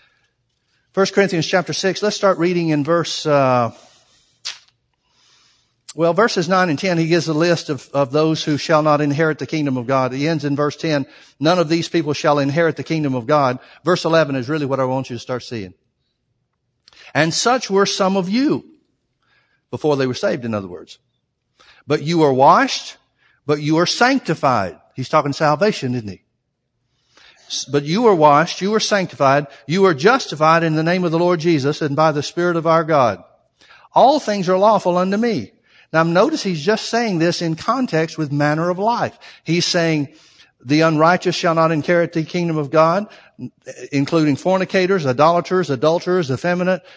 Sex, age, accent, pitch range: male, 60-79, American, 140-180 Hz